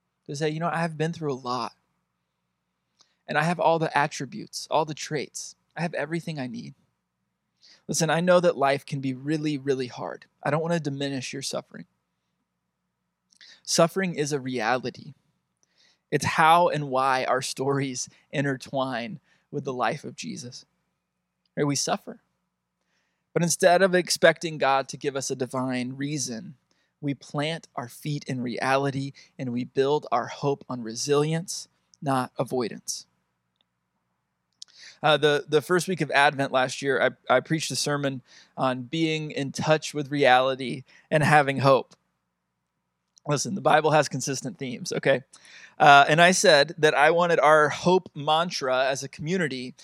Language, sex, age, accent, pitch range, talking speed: English, male, 20-39, American, 130-160 Hz, 155 wpm